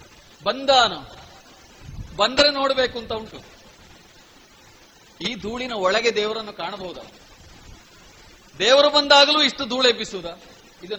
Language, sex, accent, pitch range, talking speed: Kannada, male, native, 180-255 Hz, 85 wpm